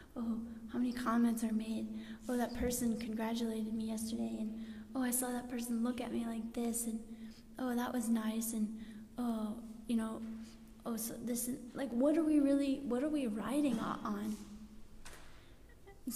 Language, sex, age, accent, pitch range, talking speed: English, female, 20-39, American, 220-245 Hz, 175 wpm